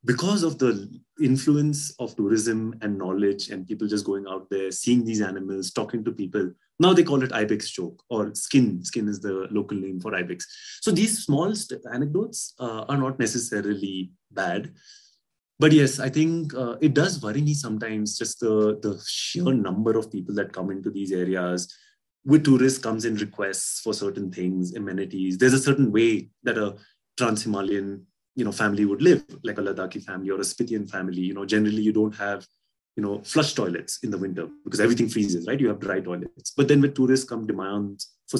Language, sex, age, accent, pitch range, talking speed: English, male, 30-49, Indian, 100-135 Hz, 190 wpm